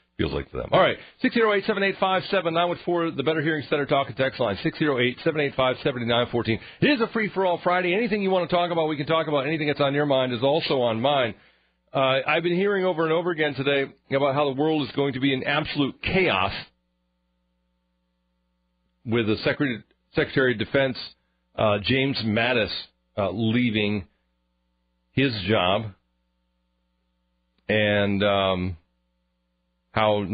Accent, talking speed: American, 150 wpm